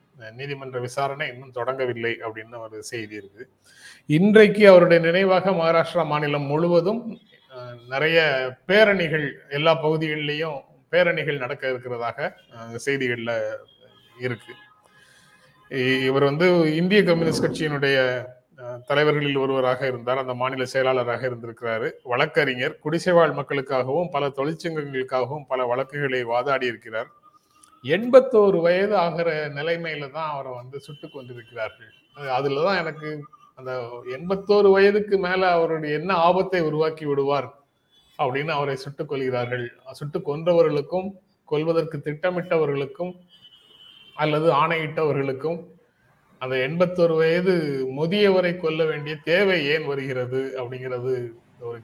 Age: 30-49